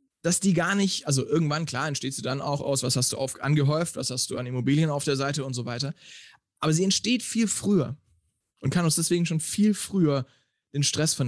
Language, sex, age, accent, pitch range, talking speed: German, male, 10-29, German, 130-160 Hz, 225 wpm